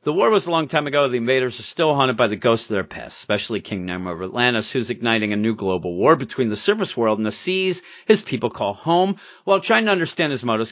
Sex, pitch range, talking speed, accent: male, 105-155 Hz, 260 wpm, American